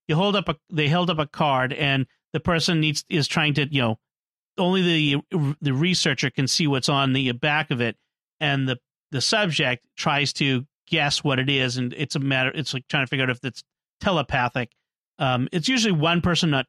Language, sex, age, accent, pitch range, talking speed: English, male, 40-59, American, 135-175 Hz, 210 wpm